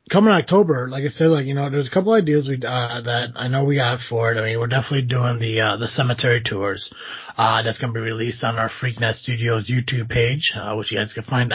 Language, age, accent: English, 30-49, American